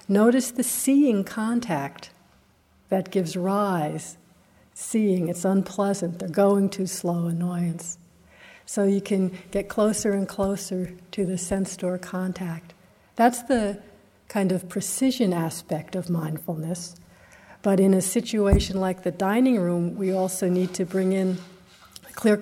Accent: American